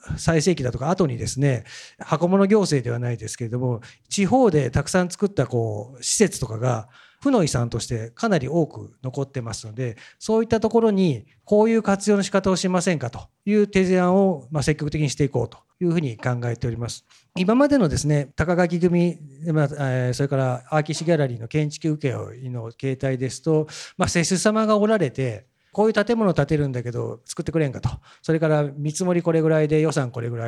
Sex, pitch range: male, 125-185 Hz